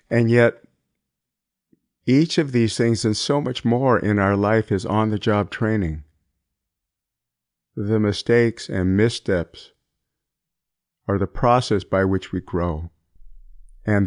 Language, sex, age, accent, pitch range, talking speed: English, male, 50-69, American, 95-115 Hz, 120 wpm